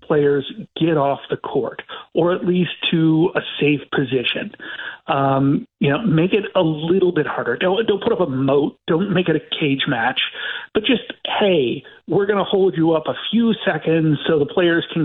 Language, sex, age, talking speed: English, male, 40-59, 195 wpm